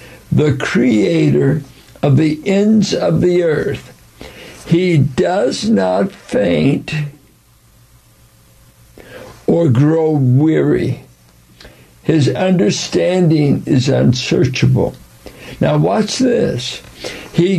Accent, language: American, English